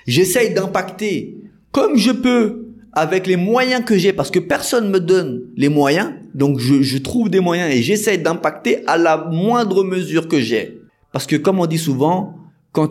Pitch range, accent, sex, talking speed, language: 145-195 Hz, French, male, 180 wpm, French